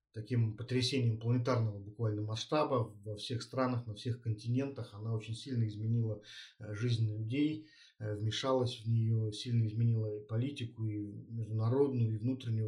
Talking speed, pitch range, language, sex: 135 wpm, 110-120 Hz, Russian, male